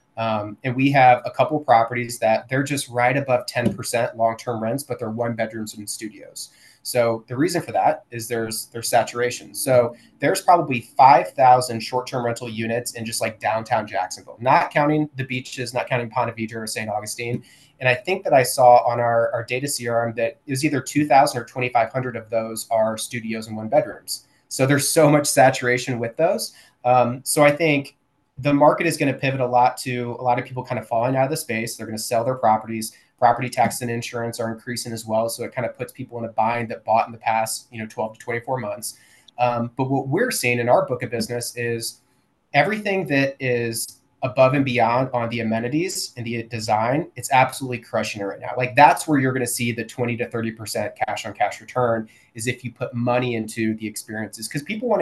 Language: English